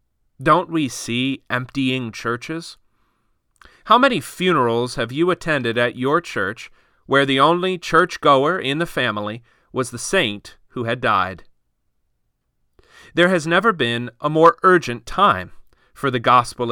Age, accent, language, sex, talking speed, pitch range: 40-59, American, English, male, 135 wpm, 115-155 Hz